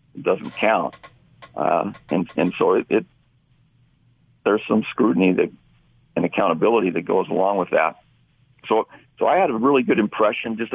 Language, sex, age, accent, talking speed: English, male, 50-69, American, 155 wpm